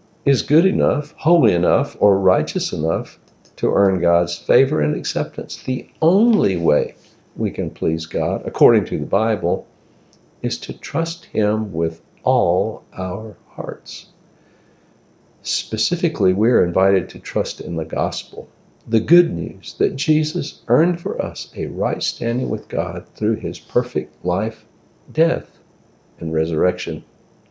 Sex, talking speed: male, 135 wpm